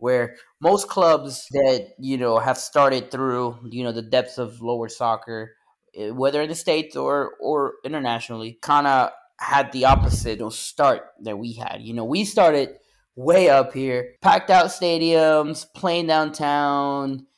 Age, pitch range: 20-39, 120-140 Hz